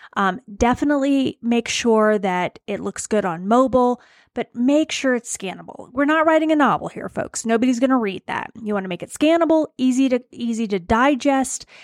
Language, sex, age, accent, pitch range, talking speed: English, female, 30-49, American, 210-265 Hz, 195 wpm